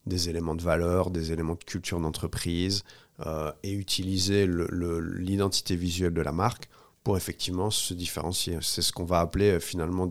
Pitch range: 80-100 Hz